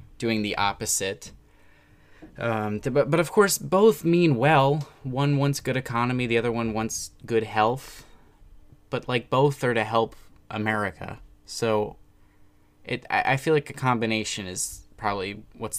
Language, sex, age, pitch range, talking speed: English, male, 20-39, 100-130 Hz, 140 wpm